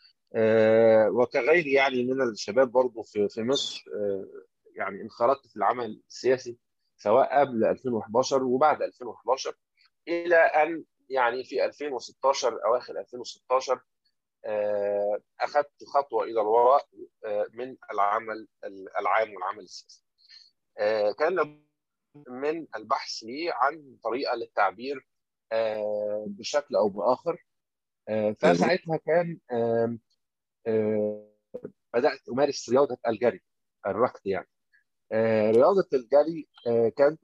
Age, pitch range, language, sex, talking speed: 30-49, 115-150 Hz, Arabic, male, 100 wpm